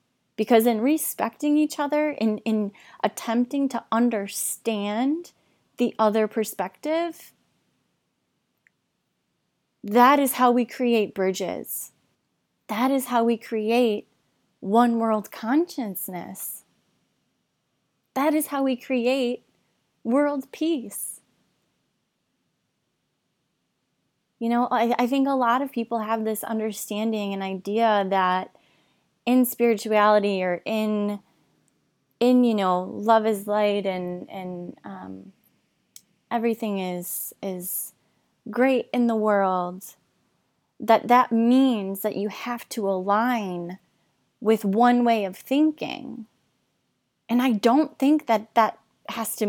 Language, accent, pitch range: English, American, 205-250 Hz